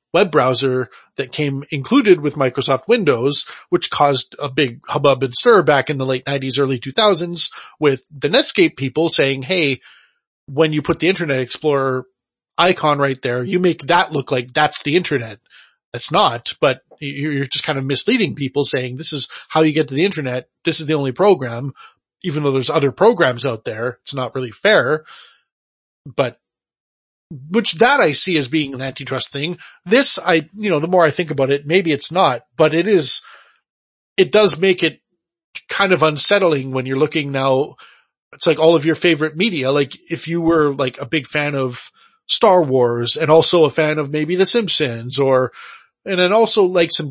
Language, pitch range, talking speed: English, 135-175 Hz, 190 wpm